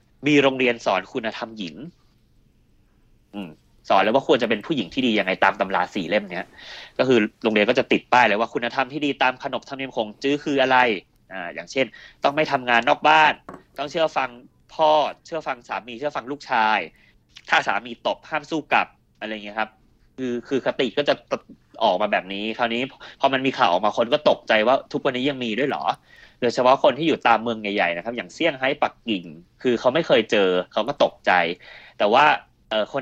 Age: 20-39